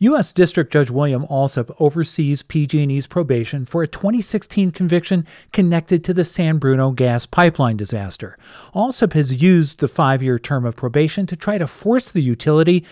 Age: 40-59